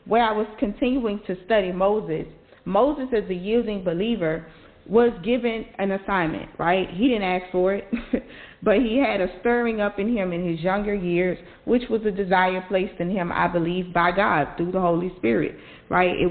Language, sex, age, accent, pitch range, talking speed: English, female, 40-59, American, 180-210 Hz, 190 wpm